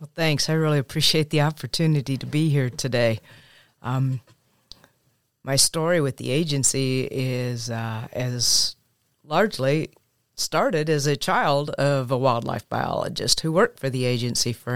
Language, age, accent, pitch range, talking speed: English, 40-59, American, 125-145 Hz, 140 wpm